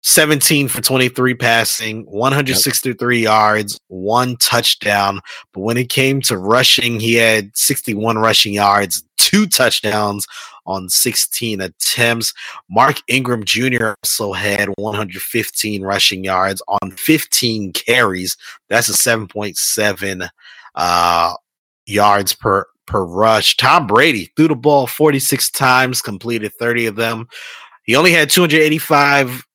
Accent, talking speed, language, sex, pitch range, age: American, 115 wpm, English, male, 105-130 Hz, 20-39